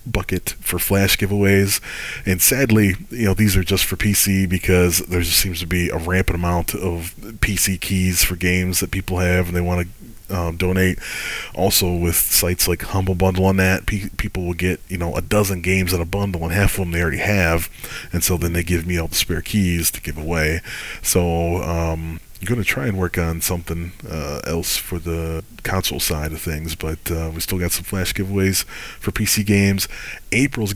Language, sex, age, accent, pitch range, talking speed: English, male, 30-49, American, 85-100 Hz, 200 wpm